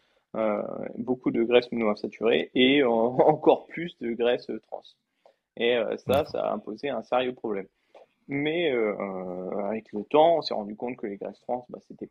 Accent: French